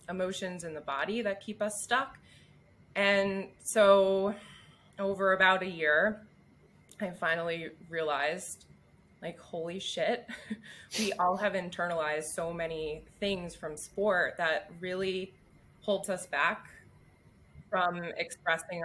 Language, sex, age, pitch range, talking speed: English, female, 20-39, 165-195 Hz, 115 wpm